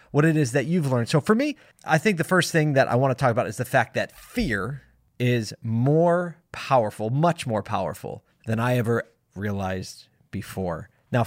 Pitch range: 110-150 Hz